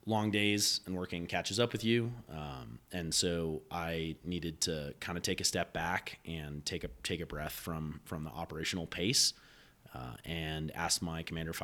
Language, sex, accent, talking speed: English, male, American, 190 wpm